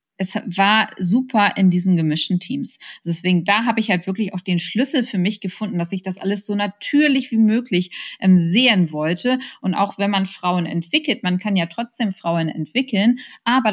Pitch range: 180-230 Hz